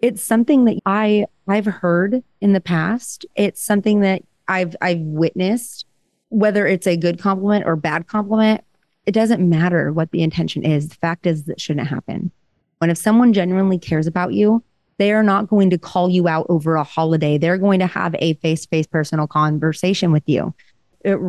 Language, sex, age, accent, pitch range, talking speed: English, female, 30-49, American, 165-200 Hz, 185 wpm